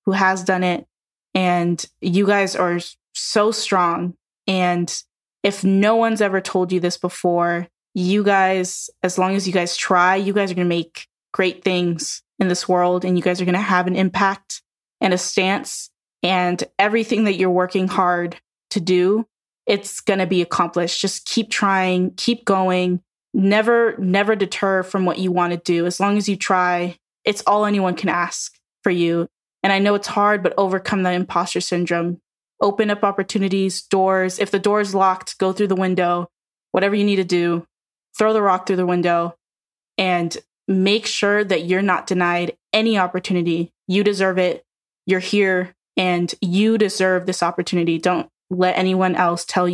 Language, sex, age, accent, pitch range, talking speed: English, female, 10-29, American, 180-200 Hz, 175 wpm